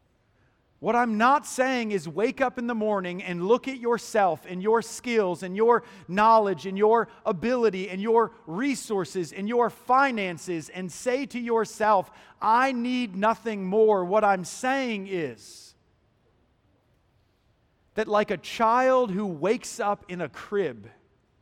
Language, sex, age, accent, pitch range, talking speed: English, male, 40-59, American, 140-215 Hz, 145 wpm